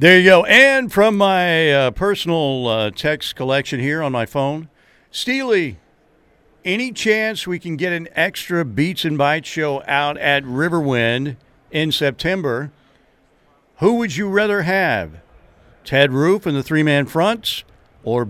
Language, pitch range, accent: English, 120-170 Hz, American